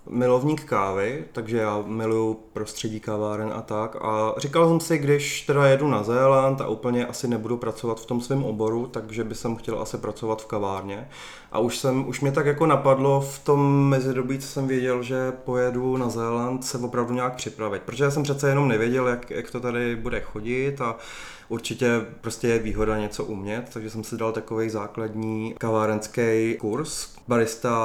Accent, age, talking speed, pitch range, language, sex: native, 20-39, 180 wpm, 110-130 Hz, Czech, male